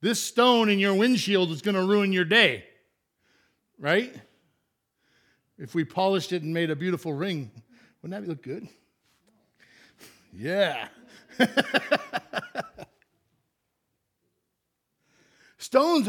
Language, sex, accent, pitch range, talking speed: English, male, American, 135-195 Hz, 100 wpm